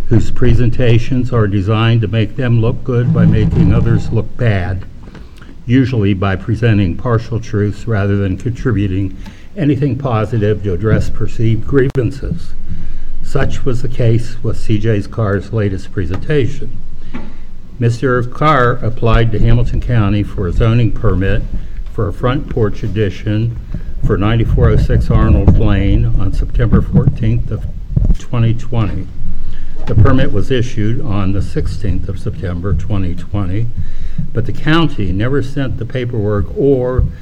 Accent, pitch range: American, 95-120 Hz